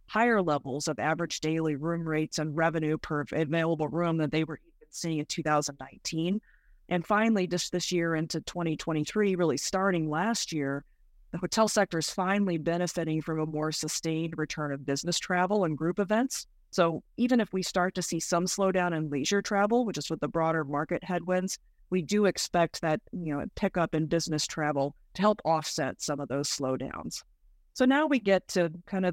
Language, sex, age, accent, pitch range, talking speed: English, female, 40-59, American, 155-180 Hz, 185 wpm